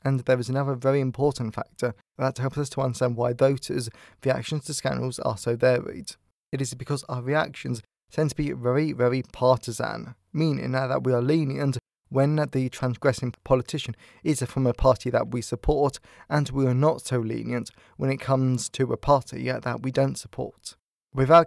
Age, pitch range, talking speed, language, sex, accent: 20-39, 125-145 Hz, 180 wpm, English, male, British